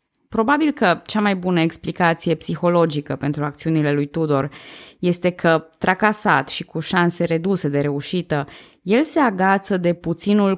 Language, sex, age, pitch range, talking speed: Romanian, female, 20-39, 150-200 Hz, 140 wpm